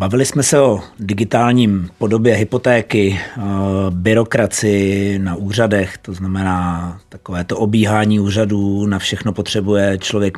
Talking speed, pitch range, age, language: 115 wpm, 100-115 Hz, 30-49, Czech